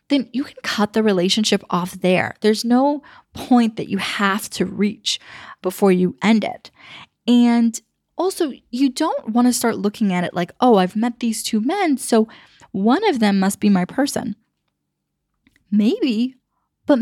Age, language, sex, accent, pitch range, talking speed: 10-29, English, female, American, 195-255 Hz, 165 wpm